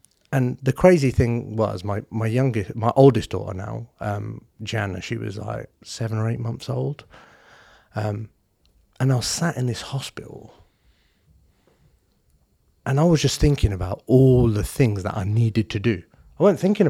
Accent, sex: British, male